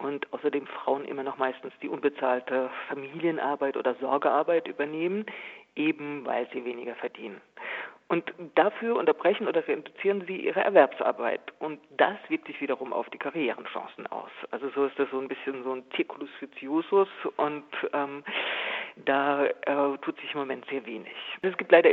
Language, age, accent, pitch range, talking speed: German, 50-69, German, 135-180 Hz, 165 wpm